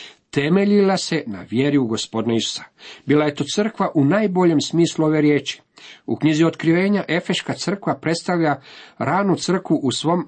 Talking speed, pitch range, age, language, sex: 150 wpm, 120-160 Hz, 50-69, Croatian, male